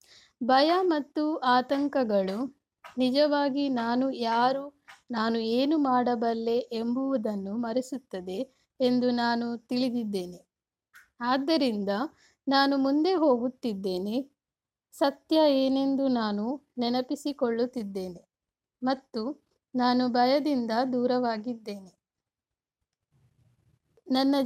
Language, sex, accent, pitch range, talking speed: English, female, Indian, 230-275 Hz, 65 wpm